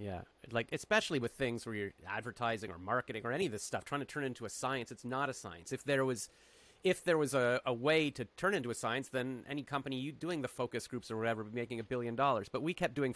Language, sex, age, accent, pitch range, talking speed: English, male, 30-49, American, 115-145 Hz, 270 wpm